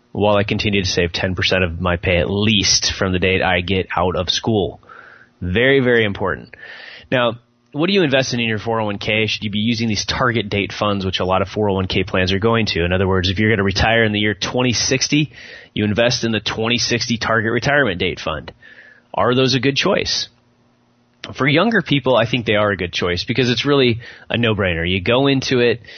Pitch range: 100-120 Hz